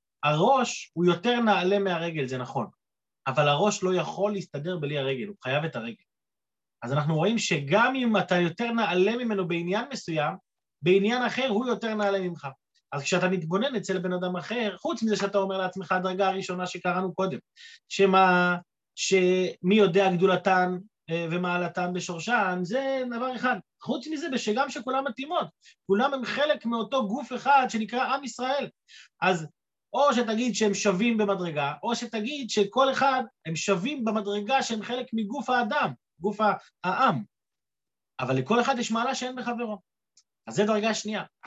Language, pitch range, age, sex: Hebrew, 180-240 Hz, 30-49, male